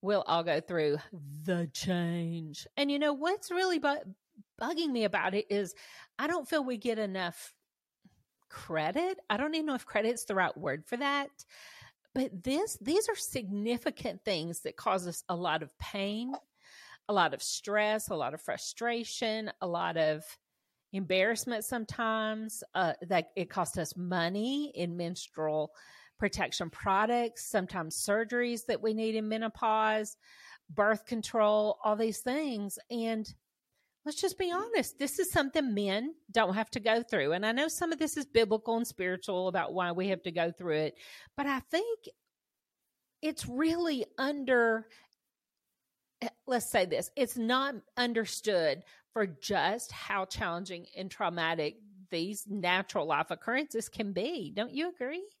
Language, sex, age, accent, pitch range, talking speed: English, female, 40-59, American, 185-260 Hz, 155 wpm